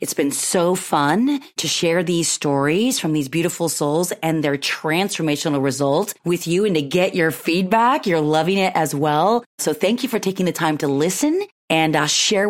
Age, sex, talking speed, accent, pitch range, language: 30-49, female, 190 wpm, American, 160-215 Hz, English